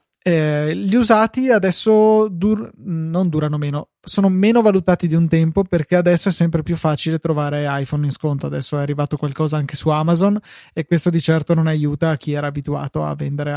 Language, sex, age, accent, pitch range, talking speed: Italian, male, 20-39, native, 145-170 Hz, 180 wpm